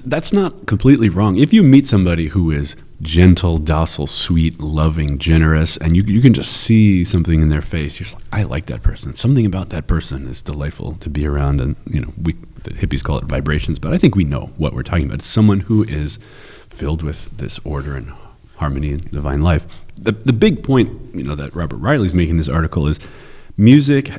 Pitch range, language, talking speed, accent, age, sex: 75-105 Hz, English, 215 wpm, American, 30-49, male